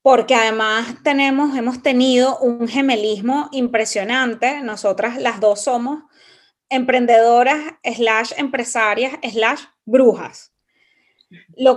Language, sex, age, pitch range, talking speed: Spanish, female, 20-39, 220-280 Hz, 90 wpm